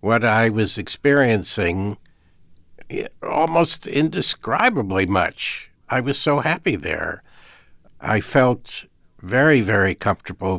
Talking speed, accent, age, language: 95 wpm, American, 60-79, English